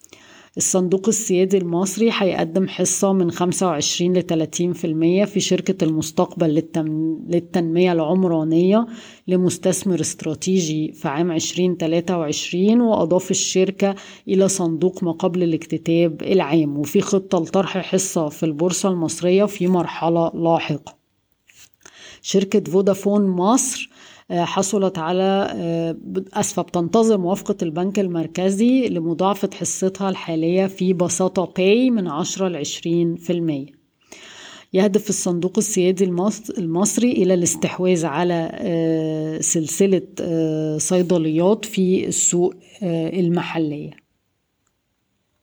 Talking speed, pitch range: 90 wpm, 165-190 Hz